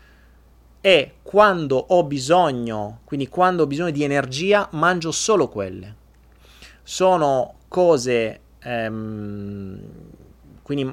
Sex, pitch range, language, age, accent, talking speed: male, 115-150 Hz, Italian, 30-49, native, 95 wpm